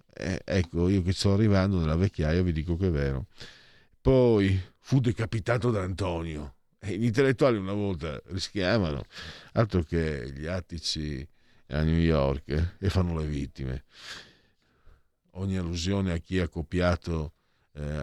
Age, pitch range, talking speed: 50-69, 80-105 Hz, 140 wpm